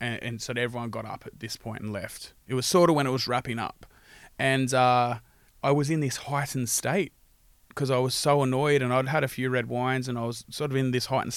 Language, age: English, 20-39